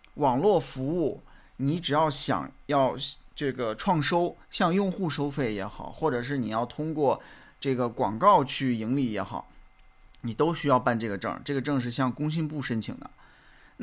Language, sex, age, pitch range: Chinese, male, 20-39, 120-150 Hz